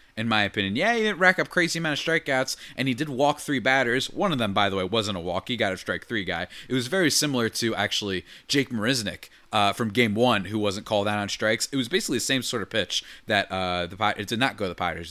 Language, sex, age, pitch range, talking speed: English, male, 20-39, 105-135 Hz, 275 wpm